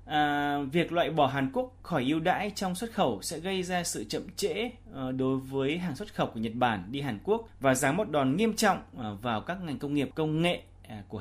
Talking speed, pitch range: 230 wpm, 125-170 Hz